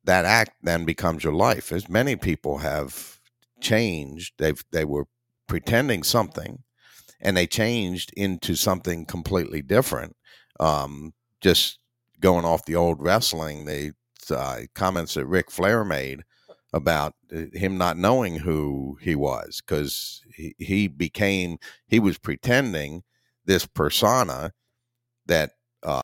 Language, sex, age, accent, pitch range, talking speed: English, male, 50-69, American, 80-110 Hz, 125 wpm